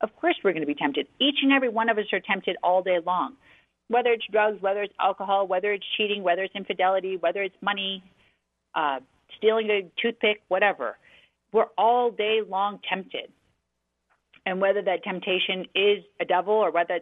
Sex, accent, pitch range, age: female, American, 165-215 Hz, 40-59